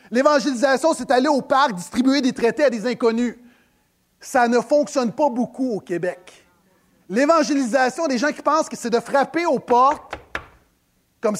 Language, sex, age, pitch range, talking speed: French, male, 30-49, 230-290 Hz, 160 wpm